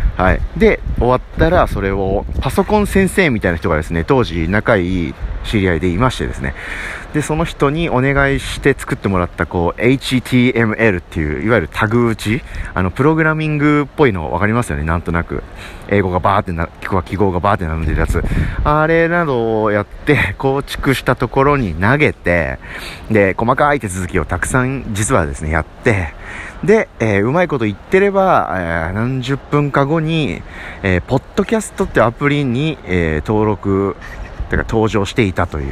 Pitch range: 85-135 Hz